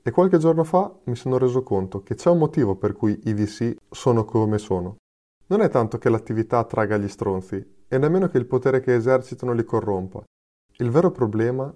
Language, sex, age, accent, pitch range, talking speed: Italian, male, 20-39, native, 110-135 Hz, 200 wpm